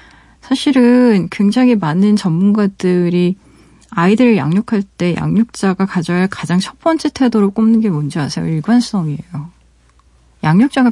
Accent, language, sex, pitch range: native, Korean, female, 170-235 Hz